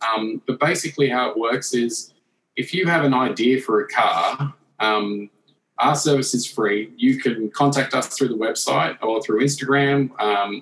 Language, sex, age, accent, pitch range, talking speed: English, male, 20-39, Australian, 110-140 Hz, 175 wpm